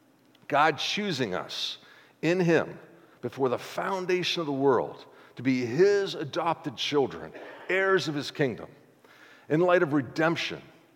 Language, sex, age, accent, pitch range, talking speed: English, male, 50-69, American, 130-175 Hz, 130 wpm